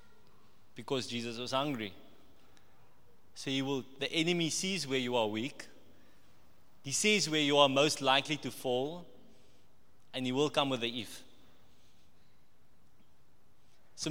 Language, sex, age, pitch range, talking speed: English, male, 20-39, 125-155 Hz, 130 wpm